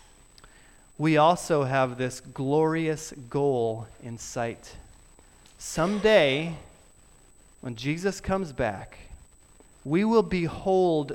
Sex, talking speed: male, 85 wpm